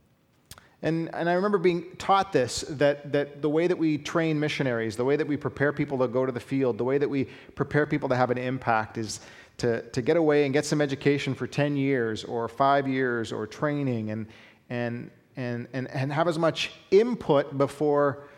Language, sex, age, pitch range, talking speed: English, male, 40-59, 120-145 Hz, 205 wpm